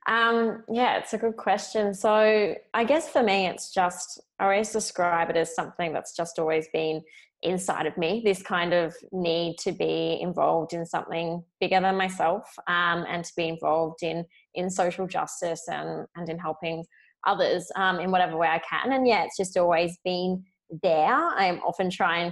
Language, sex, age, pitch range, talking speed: English, female, 20-39, 165-195 Hz, 185 wpm